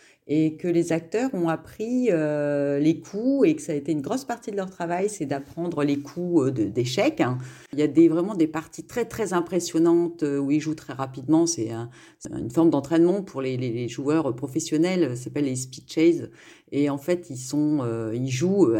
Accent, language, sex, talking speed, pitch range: French, French, female, 210 wpm, 150-180 Hz